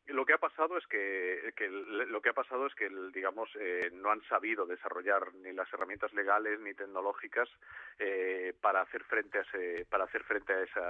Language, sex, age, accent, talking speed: Spanish, male, 40-59, Spanish, 200 wpm